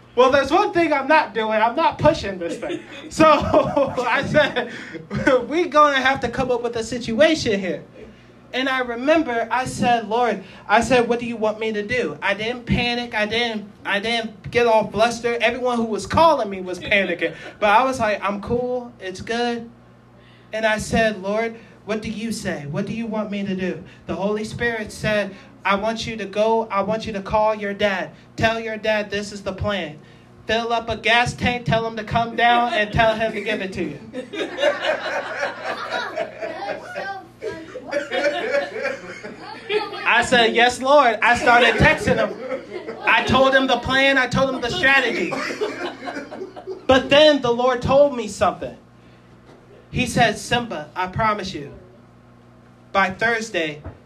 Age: 20-39